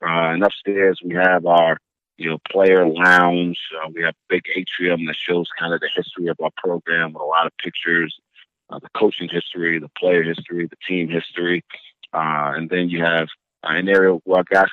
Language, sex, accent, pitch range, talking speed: English, male, American, 85-95 Hz, 205 wpm